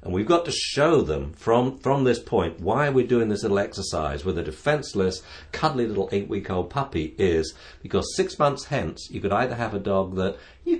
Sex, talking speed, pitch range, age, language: male, 210 wpm, 80-120 Hz, 60-79, English